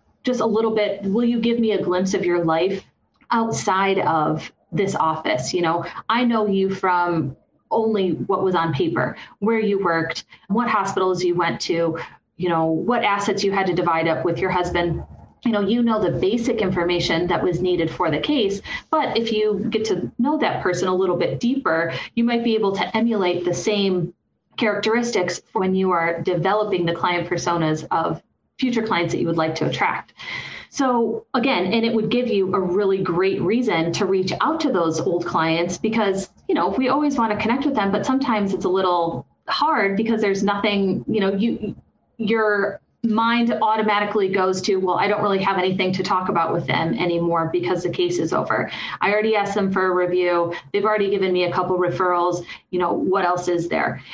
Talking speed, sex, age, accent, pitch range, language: 200 wpm, female, 30-49, American, 175-215 Hz, English